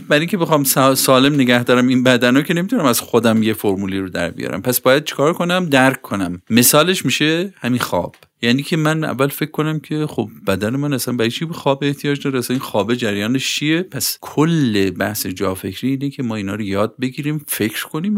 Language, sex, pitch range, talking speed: Persian, male, 105-145 Hz, 200 wpm